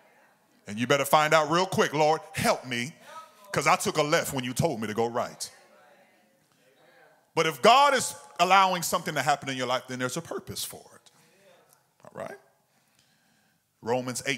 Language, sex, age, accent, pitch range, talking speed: English, male, 40-59, American, 125-175 Hz, 175 wpm